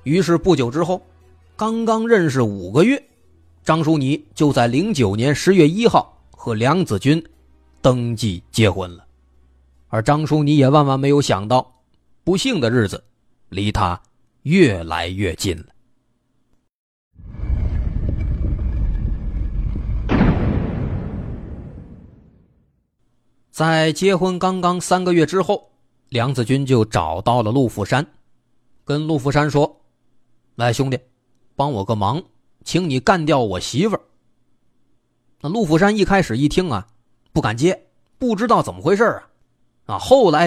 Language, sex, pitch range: Chinese, male, 115-165 Hz